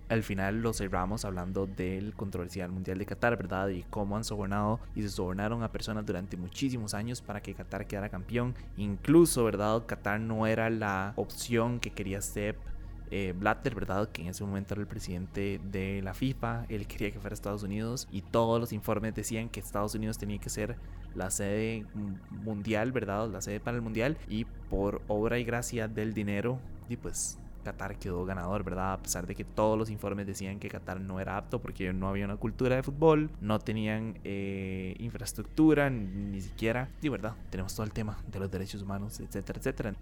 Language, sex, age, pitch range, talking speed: Spanish, male, 20-39, 95-115 Hz, 195 wpm